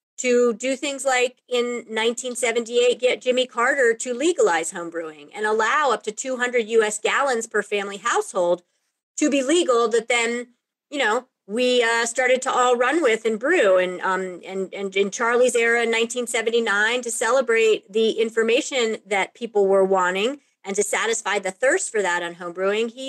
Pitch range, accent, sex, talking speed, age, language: 205-255 Hz, American, female, 165 wpm, 30-49, English